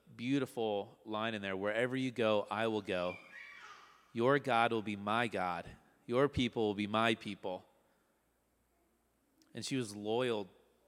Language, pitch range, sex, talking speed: English, 95-120 Hz, male, 145 wpm